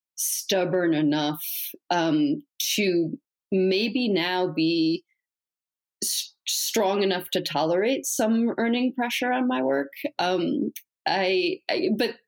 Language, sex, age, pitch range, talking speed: English, female, 30-49, 170-255 Hz, 110 wpm